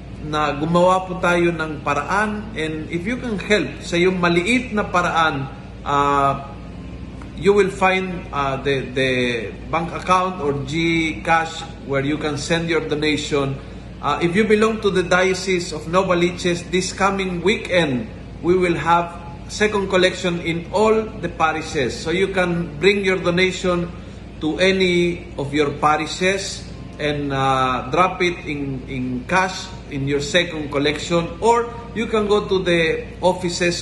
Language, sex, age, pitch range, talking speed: Filipino, male, 50-69, 145-180 Hz, 150 wpm